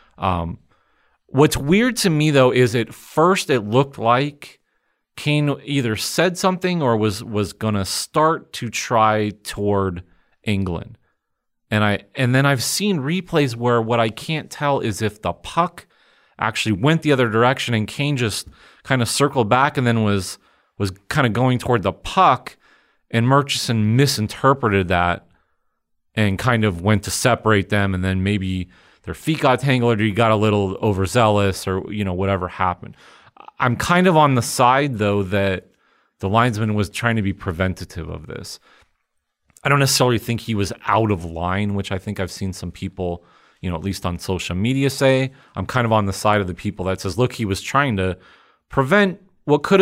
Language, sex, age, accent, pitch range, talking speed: English, male, 30-49, American, 95-135 Hz, 185 wpm